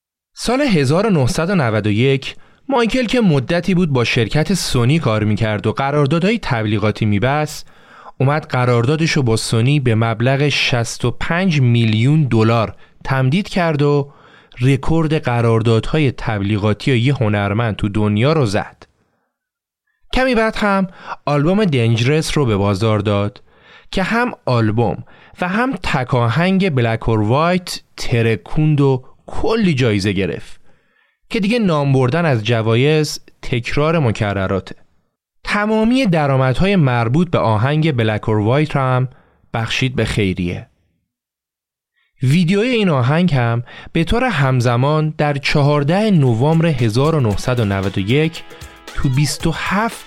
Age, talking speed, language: 30-49, 110 wpm, Persian